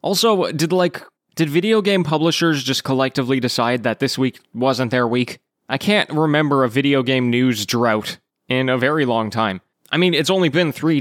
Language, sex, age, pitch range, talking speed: English, male, 20-39, 115-155 Hz, 190 wpm